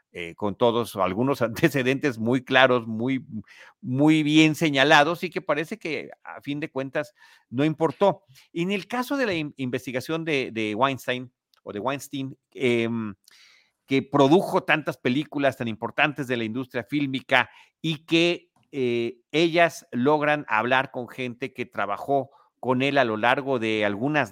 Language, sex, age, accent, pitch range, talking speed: Spanish, male, 40-59, Mexican, 115-145 Hz, 155 wpm